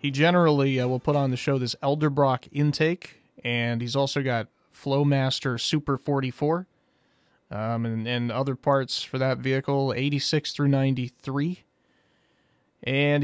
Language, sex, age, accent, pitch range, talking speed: English, male, 30-49, American, 125-155 Hz, 130 wpm